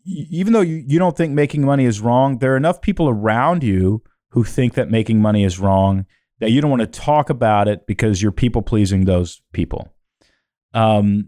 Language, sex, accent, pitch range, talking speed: English, male, American, 110-140 Hz, 195 wpm